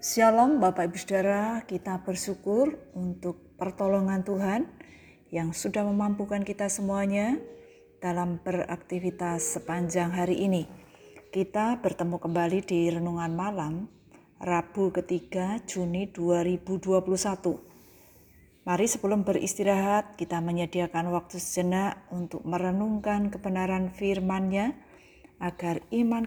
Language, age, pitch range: Indonesian, 30-49, 175-205 Hz